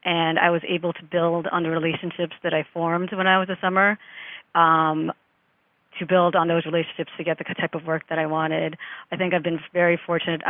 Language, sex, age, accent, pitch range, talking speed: English, female, 30-49, American, 160-175 Hz, 215 wpm